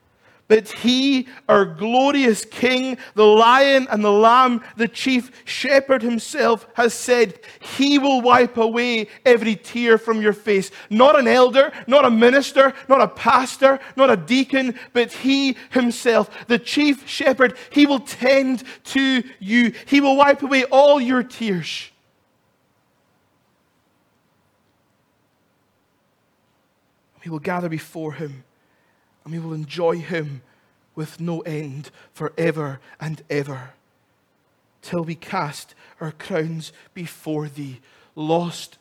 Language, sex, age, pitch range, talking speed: English, male, 40-59, 150-245 Hz, 120 wpm